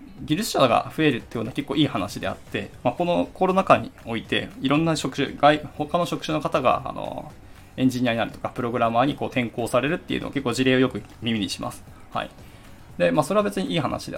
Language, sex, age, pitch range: Japanese, male, 20-39, 115-160 Hz